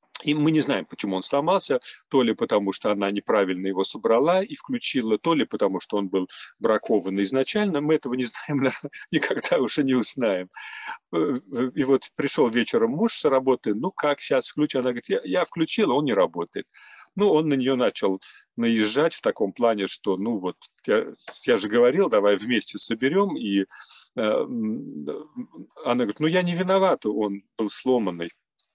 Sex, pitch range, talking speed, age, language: male, 115-170 Hz, 165 wpm, 40-59, Russian